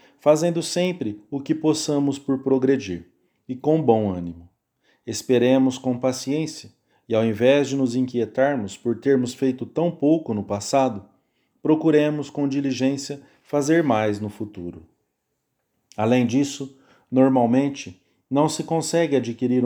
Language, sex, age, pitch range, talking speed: English, male, 40-59, 120-145 Hz, 125 wpm